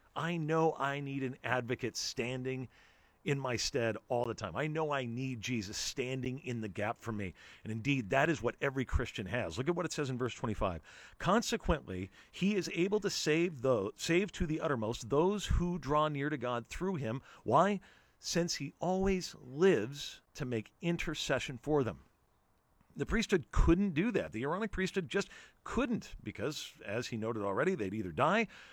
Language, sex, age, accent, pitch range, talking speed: English, male, 40-59, American, 110-170 Hz, 180 wpm